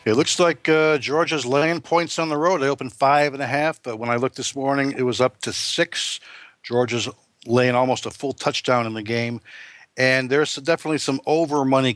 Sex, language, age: male, English, 60-79